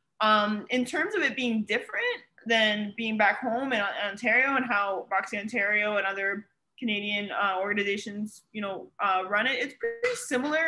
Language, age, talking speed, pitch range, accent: English, 20-39, 175 wpm, 190-220 Hz, American